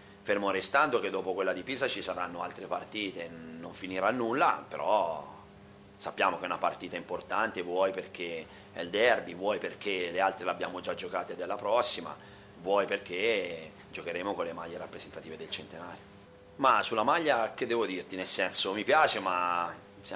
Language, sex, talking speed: Italian, male, 170 wpm